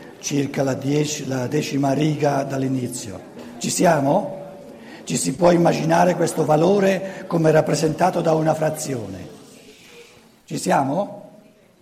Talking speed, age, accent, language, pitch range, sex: 110 wpm, 60-79, native, Italian, 135-180 Hz, male